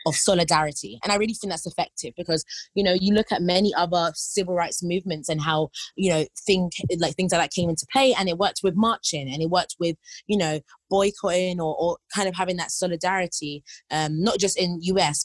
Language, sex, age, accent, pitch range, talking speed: English, female, 20-39, British, 155-185 Hz, 220 wpm